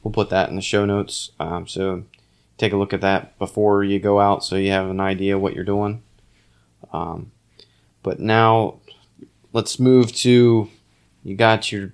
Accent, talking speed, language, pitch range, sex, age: American, 175 wpm, English, 95-110 Hz, male, 20-39